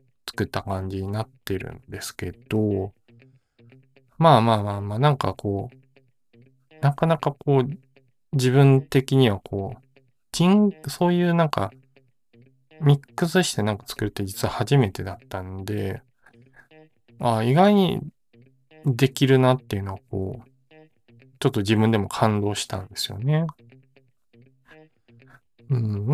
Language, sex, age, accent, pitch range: Japanese, male, 20-39, native, 110-140 Hz